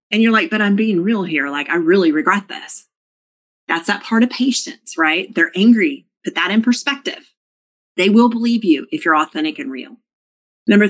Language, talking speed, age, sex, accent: English, 195 wpm, 40-59, female, American